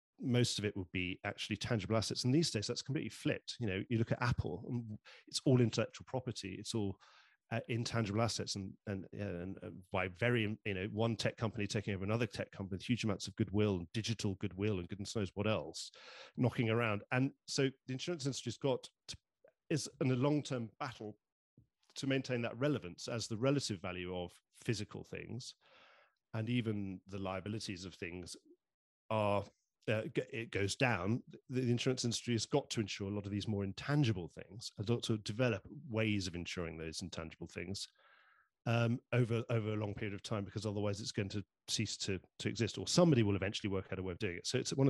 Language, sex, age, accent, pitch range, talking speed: English, male, 40-59, British, 100-120 Hz, 200 wpm